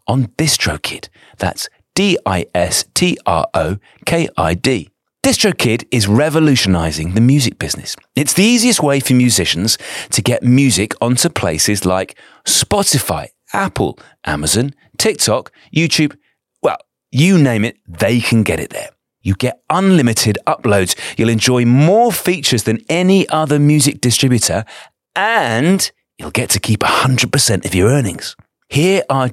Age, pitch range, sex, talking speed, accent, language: 30-49, 105-155 Hz, male, 125 wpm, British, English